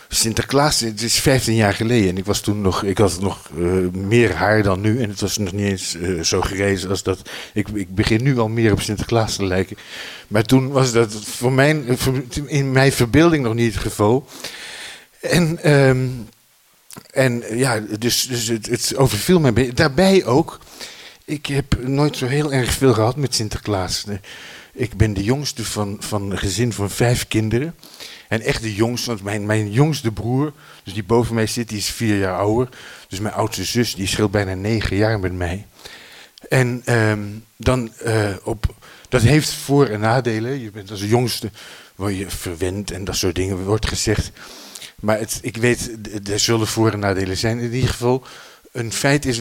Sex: male